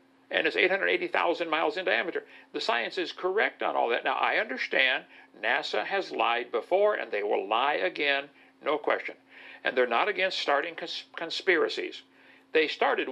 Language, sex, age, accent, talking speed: English, male, 60-79, American, 160 wpm